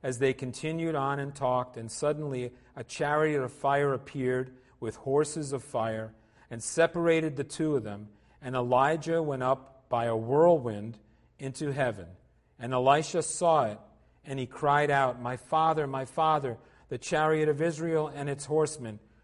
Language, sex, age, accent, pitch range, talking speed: English, male, 40-59, American, 110-145 Hz, 160 wpm